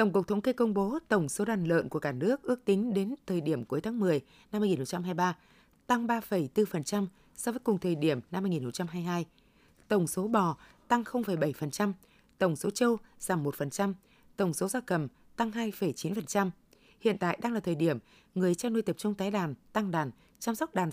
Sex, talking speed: female, 190 wpm